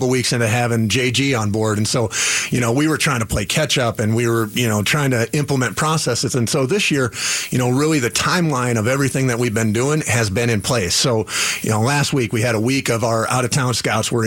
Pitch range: 115-135 Hz